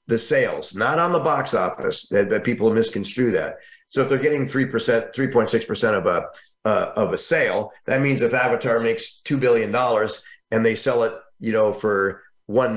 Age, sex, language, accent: 40-59, male, English, American